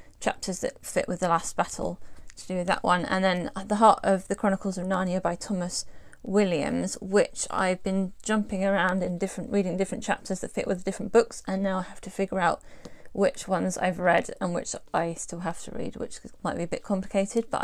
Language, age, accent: English, 30-49, British